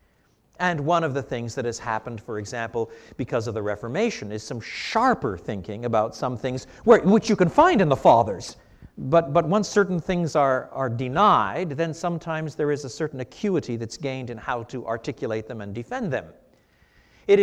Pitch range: 115-165 Hz